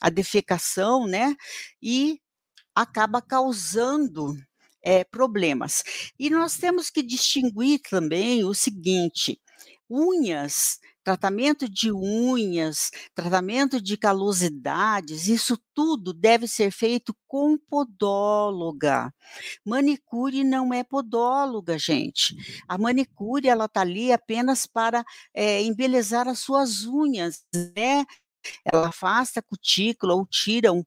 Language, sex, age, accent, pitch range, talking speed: Portuguese, female, 60-79, Brazilian, 190-260 Hz, 105 wpm